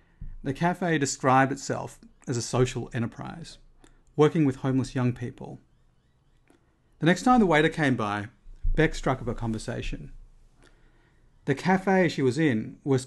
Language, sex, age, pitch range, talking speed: English, male, 40-59, 120-155 Hz, 140 wpm